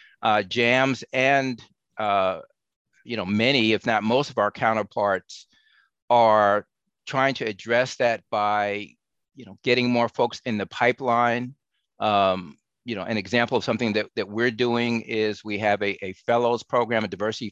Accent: American